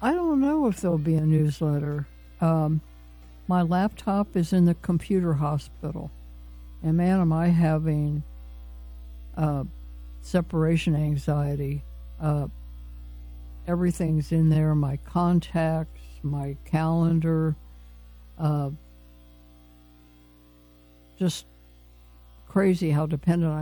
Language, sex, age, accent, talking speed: English, female, 60-79, American, 95 wpm